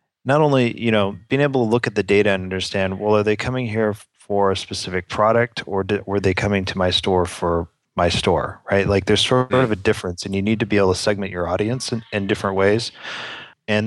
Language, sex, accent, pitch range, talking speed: English, male, American, 95-110 Hz, 240 wpm